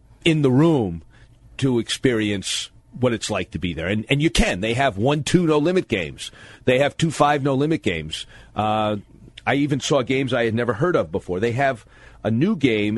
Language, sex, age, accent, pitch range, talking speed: English, male, 40-59, American, 105-130 Hz, 190 wpm